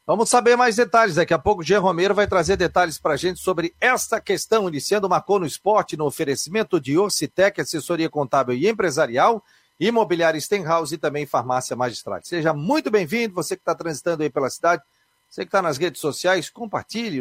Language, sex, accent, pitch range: Portuguese, male, Brazilian, 145-200 Hz